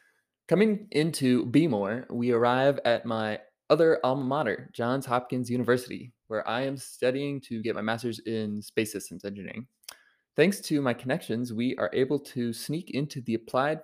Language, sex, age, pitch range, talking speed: English, male, 20-39, 115-140 Hz, 160 wpm